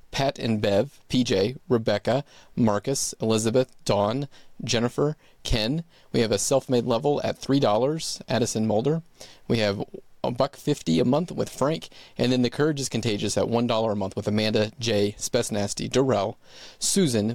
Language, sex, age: English, male, 30-49